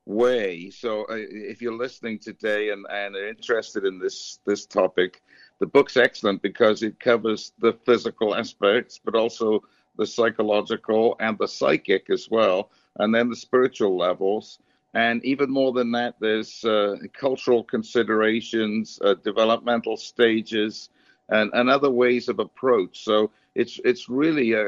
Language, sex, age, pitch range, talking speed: English, male, 60-79, 105-125 Hz, 150 wpm